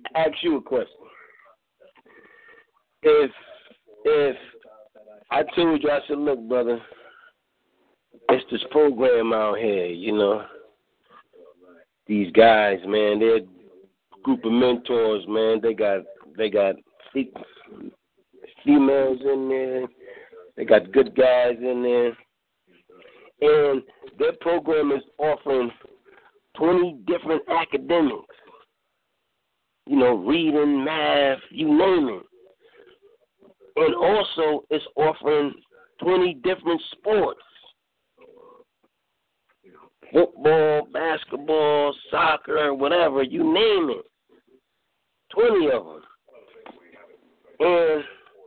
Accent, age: American, 50-69